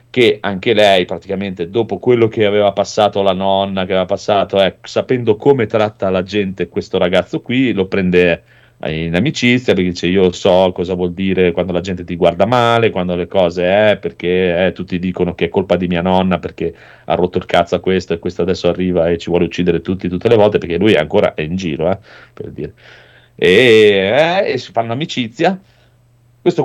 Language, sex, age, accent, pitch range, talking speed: Italian, male, 40-59, native, 95-130 Hz, 205 wpm